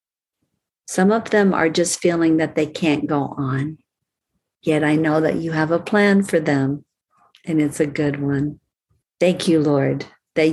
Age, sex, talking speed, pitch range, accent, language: 50-69, female, 170 wpm, 145-180 Hz, American, English